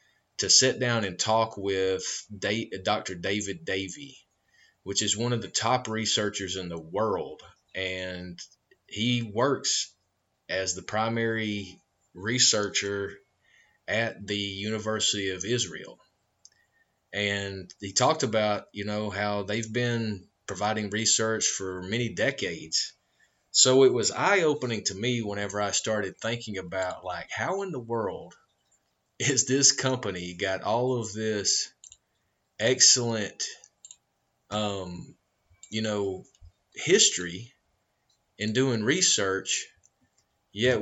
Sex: male